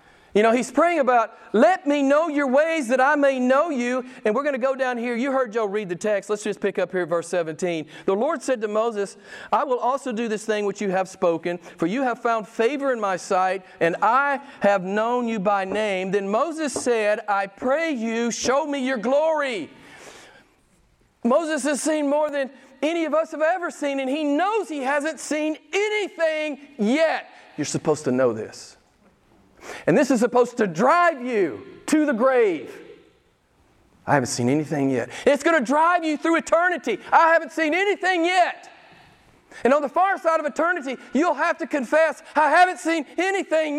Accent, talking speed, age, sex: American, 195 wpm, 40-59, male